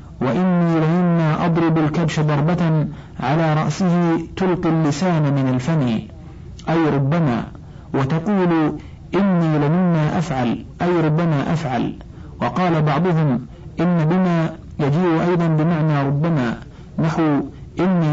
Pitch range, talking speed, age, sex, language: 150-170 Hz, 100 wpm, 50-69, male, Arabic